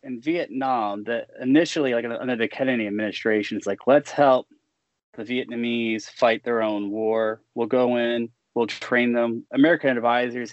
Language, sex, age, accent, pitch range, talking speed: English, male, 20-39, American, 110-130 Hz, 155 wpm